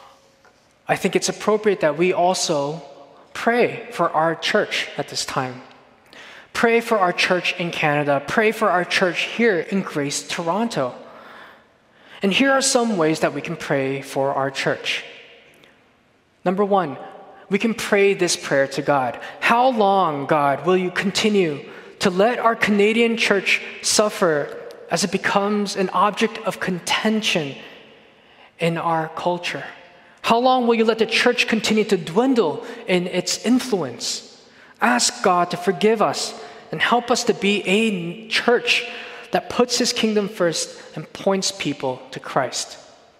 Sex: male